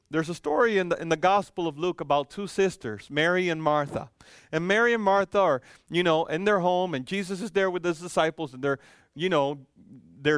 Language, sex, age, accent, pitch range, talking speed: English, male, 40-59, American, 150-205 Hz, 195 wpm